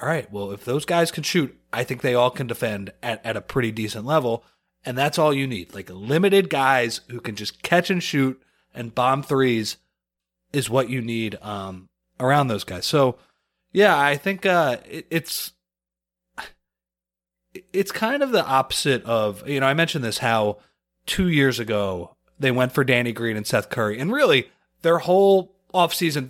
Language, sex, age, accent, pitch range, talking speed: English, male, 30-49, American, 105-150 Hz, 185 wpm